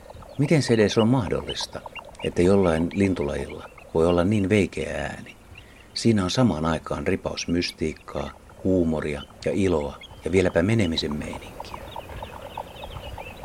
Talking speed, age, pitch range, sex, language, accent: 115 wpm, 60-79, 80-100 Hz, male, Finnish, native